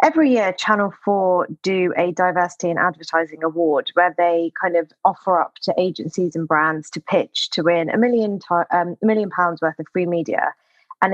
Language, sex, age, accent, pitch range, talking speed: English, female, 20-39, British, 165-195 Hz, 195 wpm